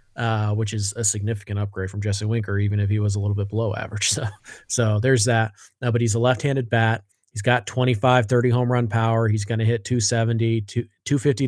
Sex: male